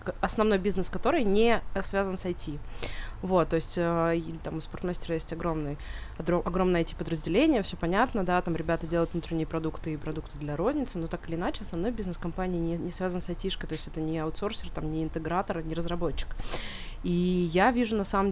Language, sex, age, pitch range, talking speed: Russian, female, 20-39, 165-195 Hz, 185 wpm